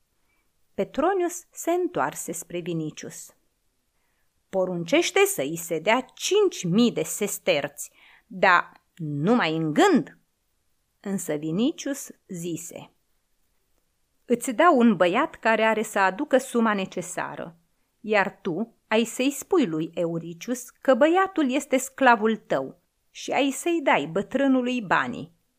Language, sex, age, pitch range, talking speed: Romanian, female, 30-49, 175-275 Hz, 115 wpm